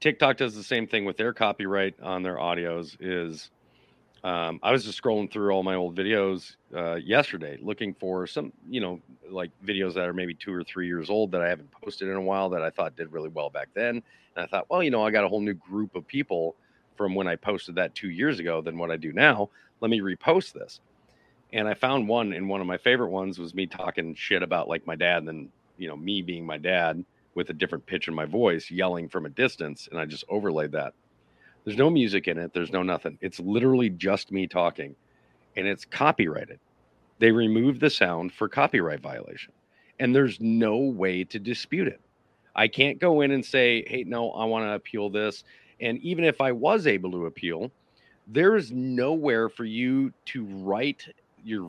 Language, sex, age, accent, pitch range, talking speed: English, male, 40-59, American, 90-120 Hz, 215 wpm